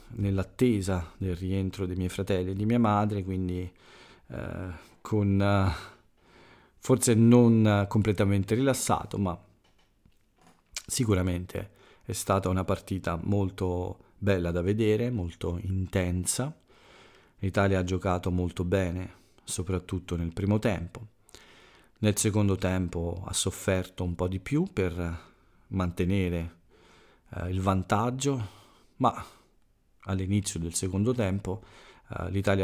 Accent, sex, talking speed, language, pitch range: native, male, 110 wpm, Italian, 90-105 Hz